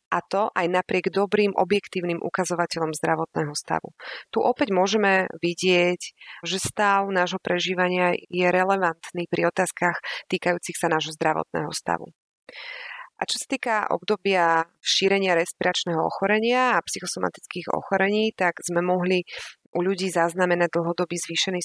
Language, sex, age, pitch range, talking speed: Slovak, female, 30-49, 170-195 Hz, 125 wpm